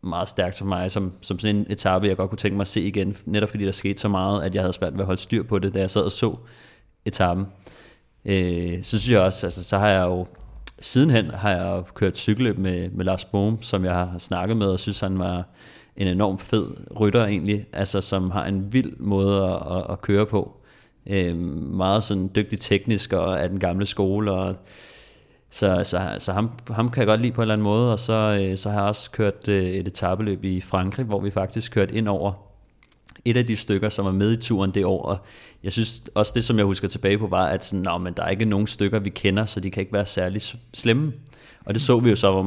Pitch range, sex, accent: 95-105 Hz, male, native